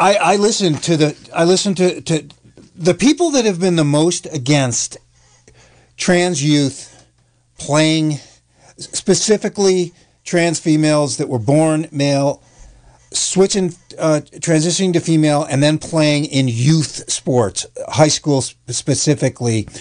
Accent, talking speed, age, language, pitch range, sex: American, 125 wpm, 50-69, English, 135-180 Hz, male